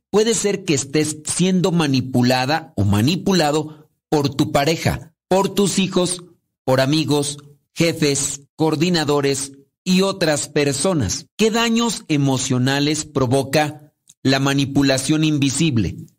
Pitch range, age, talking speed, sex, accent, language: 140-170 Hz, 50-69, 105 wpm, male, Mexican, Spanish